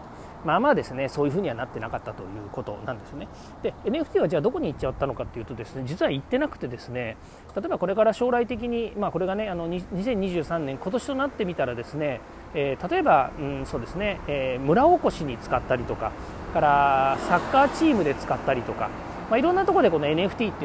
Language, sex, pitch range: Japanese, male, 140-220 Hz